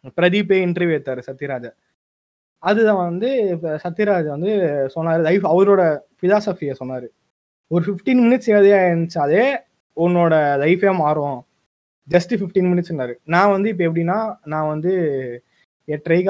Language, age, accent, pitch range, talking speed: Tamil, 20-39, native, 160-220 Hz, 110 wpm